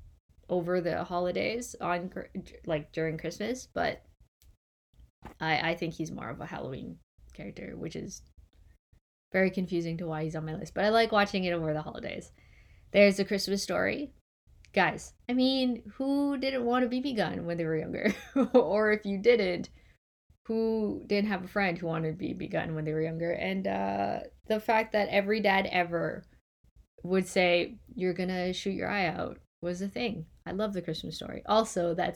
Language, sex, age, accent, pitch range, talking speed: English, female, 10-29, American, 160-205 Hz, 180 wpm